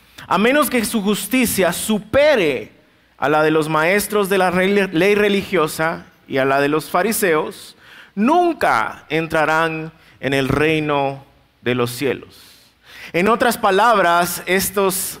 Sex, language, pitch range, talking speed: male, Spanish, 155-215 Hz, 130 wpm